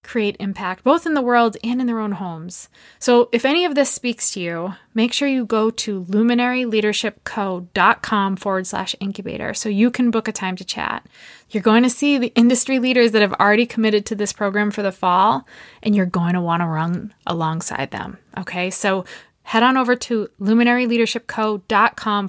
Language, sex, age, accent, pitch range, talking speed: English, female, 20-39, American, 190-235 Hz, 185 wpm